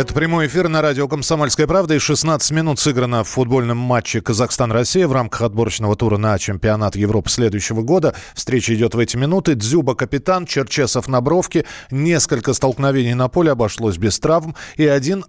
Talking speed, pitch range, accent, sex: 170 wpm, 115-155 Hz, native, male